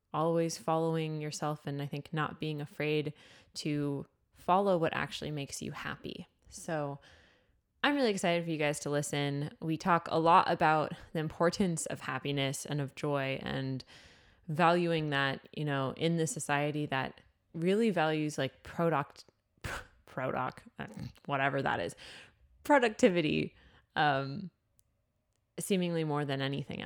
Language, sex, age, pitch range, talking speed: English, female, 20-39, 135-175 Hz, 135 wpm